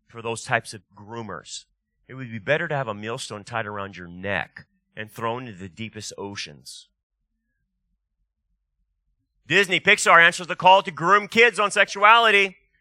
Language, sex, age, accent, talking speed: English, male, 30-49, American, 155 wpm